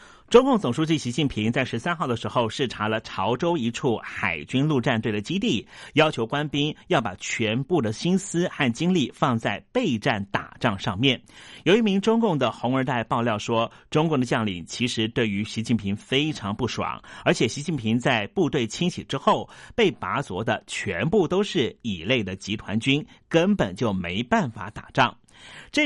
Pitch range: 110-155 Hz